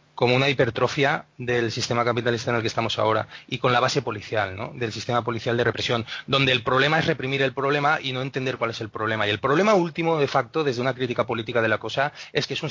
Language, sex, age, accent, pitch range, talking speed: Spanish, male, 30-49, Spanish, 120-145 Hz, 245 wpm